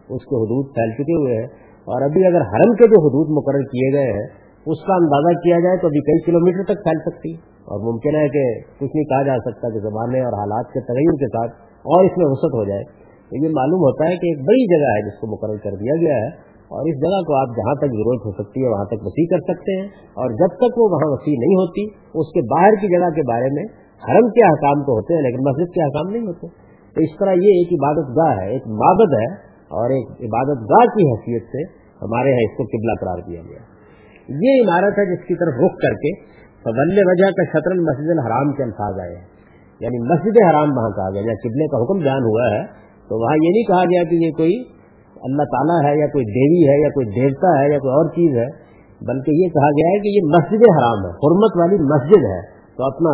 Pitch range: 120-175 Hz